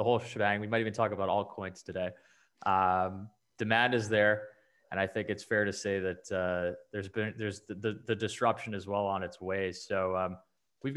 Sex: male